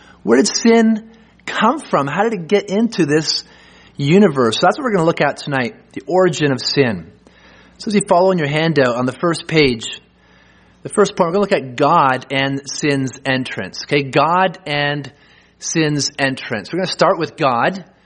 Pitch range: 135-185 Hz